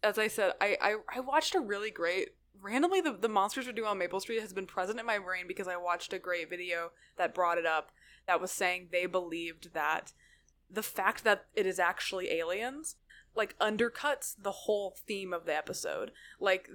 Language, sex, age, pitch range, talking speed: English, female, 20-39, 180-225 Hz, 210 wpm